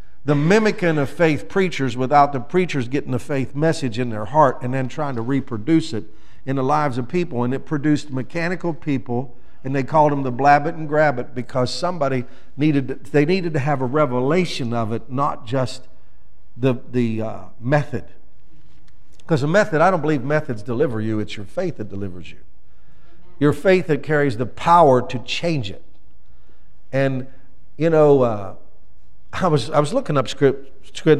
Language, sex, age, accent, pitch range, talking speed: English, male, 50-69, American, 115-155 Hz, 185 wpm